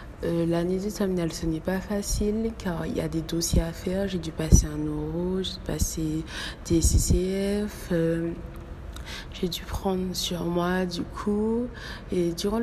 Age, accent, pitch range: 20-39, French, 150-185 Hz